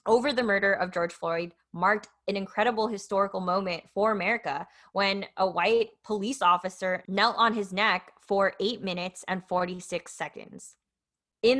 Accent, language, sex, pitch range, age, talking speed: American, English, female, 180-225 Hz, 20-39, 150 wpm